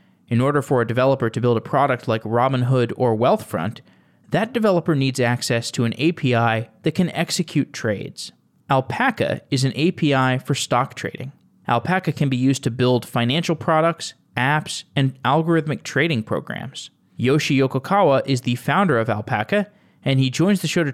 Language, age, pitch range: English, 20-39, 120-160 Hz